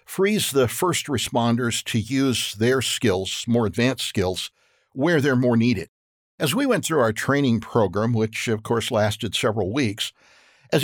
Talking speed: 160 wpm